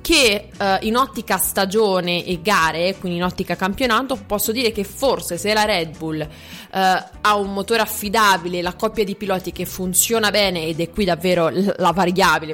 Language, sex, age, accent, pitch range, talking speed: Italian, female, 20-39, native, 175-220 Hz, 165 wpm